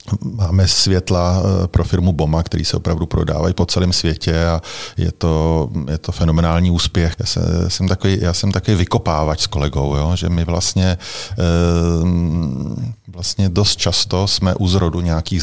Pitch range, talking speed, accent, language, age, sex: 80-95 Hz, 135 wpm, native, Czech, 40-59, male